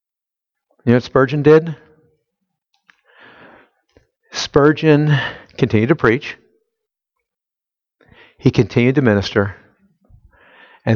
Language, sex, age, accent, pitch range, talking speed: English, male, 60-79, American, 105-145 Hz, 75 wpm